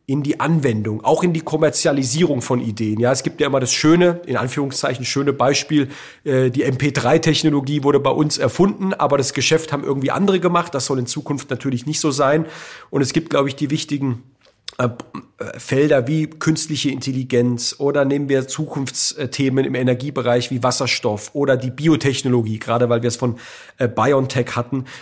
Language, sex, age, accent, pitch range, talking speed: German, male, 40-59, German, 130-150 Hz, 170 wpm